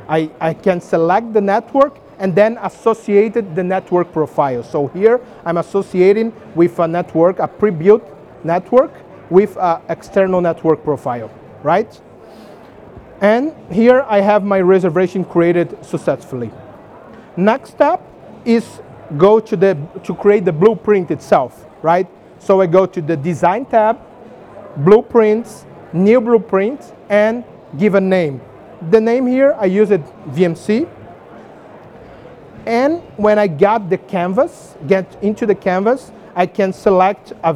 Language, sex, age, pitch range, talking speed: English, male, 40-59, 175-220 Hz, 135 wpm